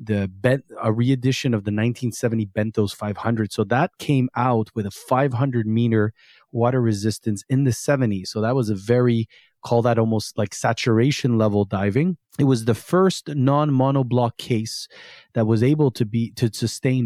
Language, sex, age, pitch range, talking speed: English, male, 30-49, 110-135 Hz, 170 wpm